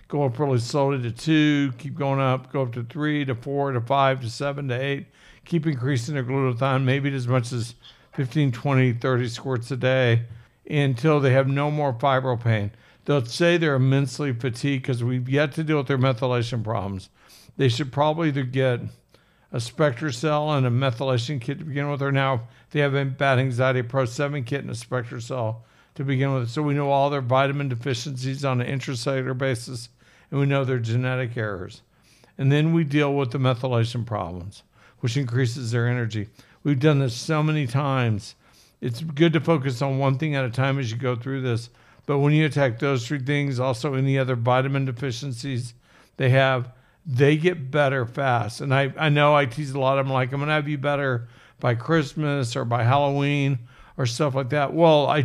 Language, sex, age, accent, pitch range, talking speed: English, male, 60-79, American, 125-145 Hz, 200 wpm